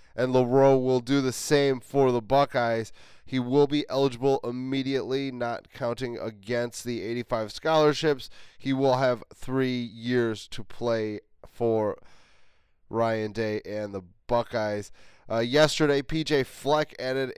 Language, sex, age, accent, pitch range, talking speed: English, male, 20-39, American, 115-140 Hz, 130 wpm